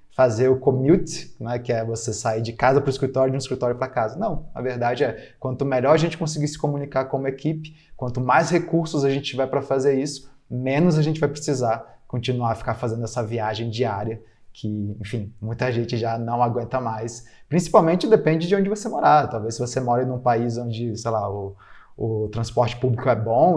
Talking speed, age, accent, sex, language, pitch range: 210 wpm, 20-39, Brazilian, male, Portuguese, 115-135 Hz